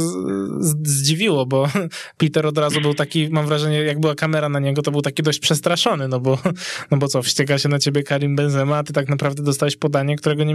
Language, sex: Polish, male